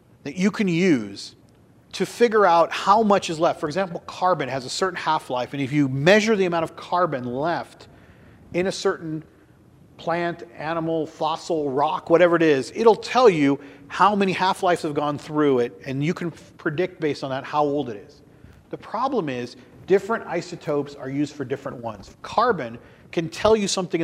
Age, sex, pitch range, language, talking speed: 40-59, male, 145-190 Hz, English, 180 wpm